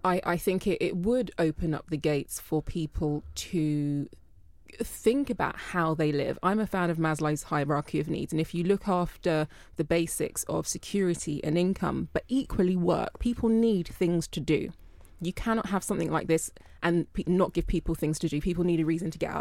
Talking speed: 200 wpm